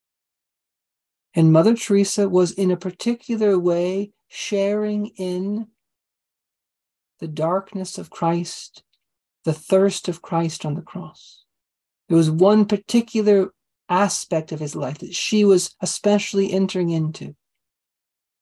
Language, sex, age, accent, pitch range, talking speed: English, male, 40-59, American, 160-200 Hz, 115 wpm